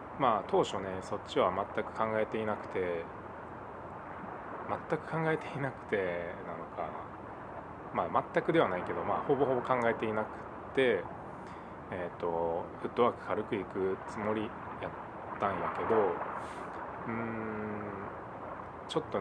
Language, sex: Japanese, male